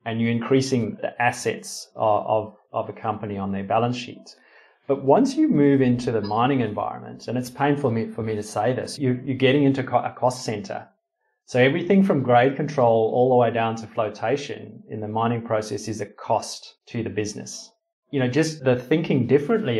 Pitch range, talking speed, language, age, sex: 110-130 Hz, 190 wpm, English, 30-49, male